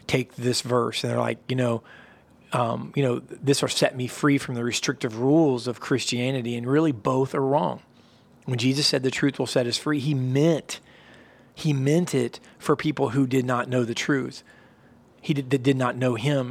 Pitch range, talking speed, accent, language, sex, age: 125-140 Hz, 205 wpm, American, English, male, 40-59